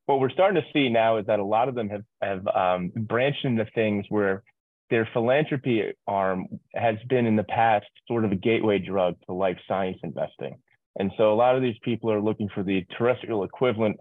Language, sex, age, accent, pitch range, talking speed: English, male, 30-49, American, 95-115 Hz, 210 wpm